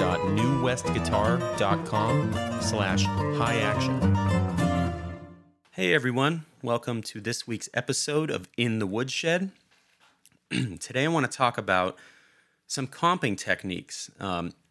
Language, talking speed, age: English, 95 wpm, 30-49